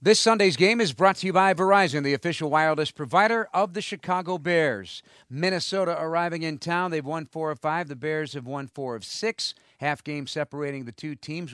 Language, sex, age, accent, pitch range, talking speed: English, male, 50-69, American, 115-150 Hz, 205 wpm